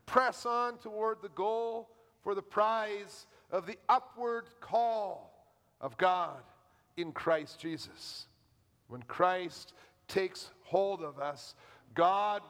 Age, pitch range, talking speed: 50-69, 175-235 Hz, 115 wpm